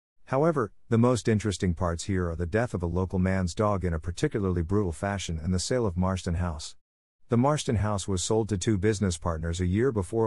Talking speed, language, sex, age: 215 wpm, English, male, 50-69